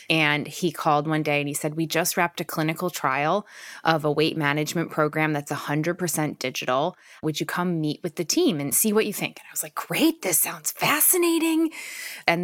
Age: 20-39